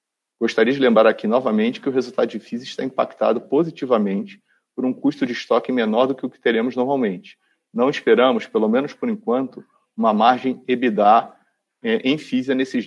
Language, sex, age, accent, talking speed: Portuguese, male, 40-59, Brazilian, 175 wpm